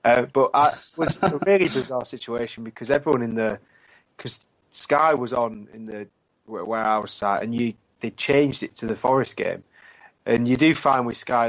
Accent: British